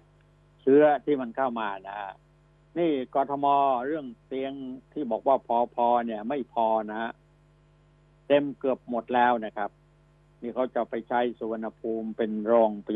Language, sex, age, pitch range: Thai, male, 60-79, 115-150 Hz